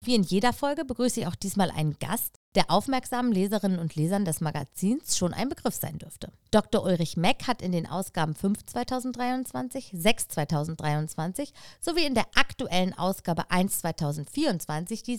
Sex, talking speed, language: female, 160 wpm, German